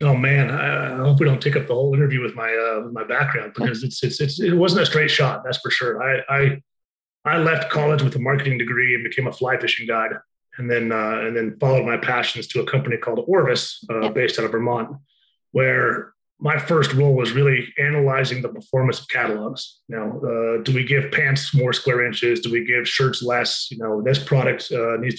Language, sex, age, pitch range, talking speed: English, male, 30-49, 120-145 Hz, 225 wpm